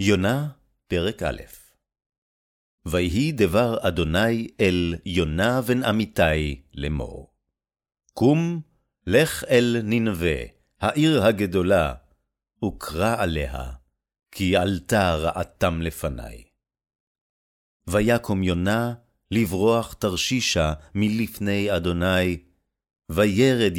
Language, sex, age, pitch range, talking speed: Hebrew, male, 50-69, 80-115 Hz, 75 wpm